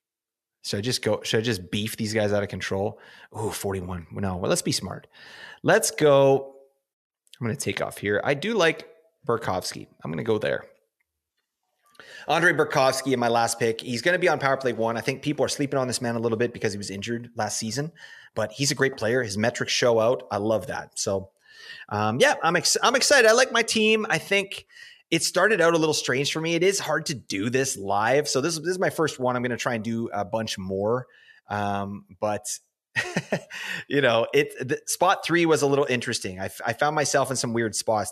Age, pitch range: 30-49, 110-160 Hz